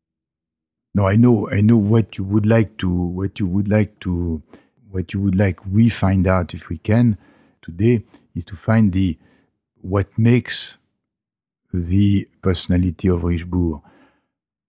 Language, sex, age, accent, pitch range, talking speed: English, male, 60-79, French, 85-105 Hz, 145 wpm